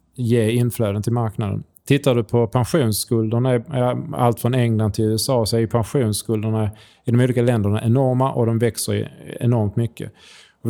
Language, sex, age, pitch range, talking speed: Swedish, male, 20-39, 105-125 Hz, 150 wpm